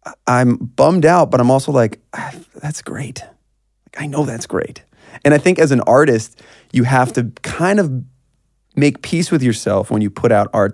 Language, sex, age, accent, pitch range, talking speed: English, male, 30-49, American, 105-135 Hz, 190 wpm